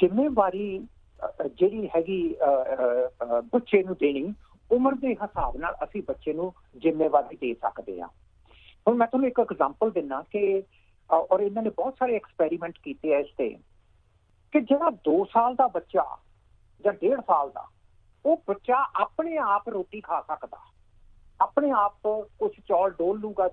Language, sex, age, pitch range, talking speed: Punjabi, male, 50-69, 165-240 Hz, 145 wpm